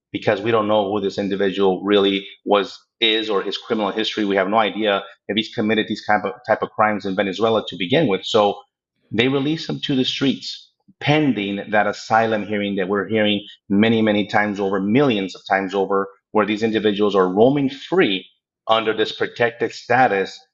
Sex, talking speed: male, 185 wpm